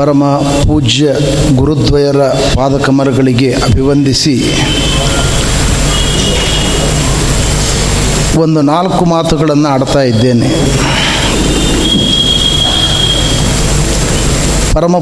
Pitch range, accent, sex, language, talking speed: 150-190 Hz, native, male, Kannada, 45 wpm